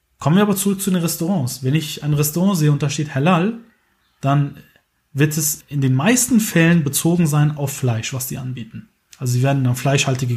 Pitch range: 135-195 Hz